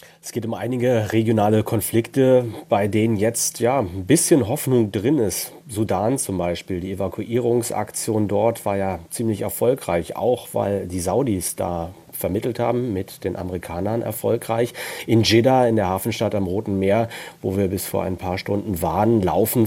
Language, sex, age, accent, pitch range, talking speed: German, male, 40-59, German, 100-120 Hz, 160 wpm